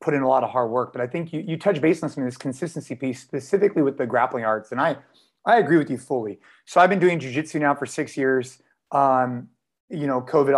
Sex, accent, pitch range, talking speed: male, American, 135-180 Hz, 255 wpm